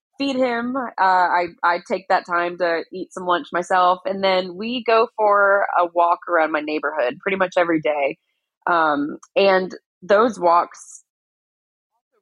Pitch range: 155-185 Hz